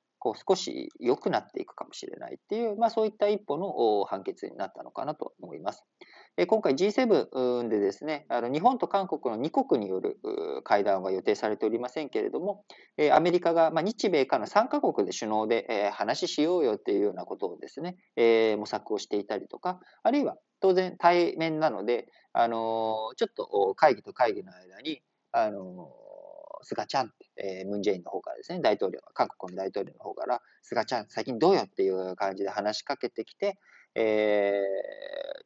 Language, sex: Japanese, male